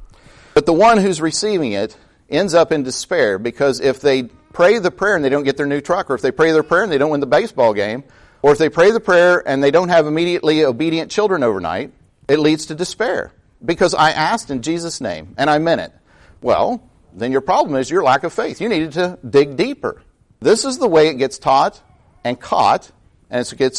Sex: male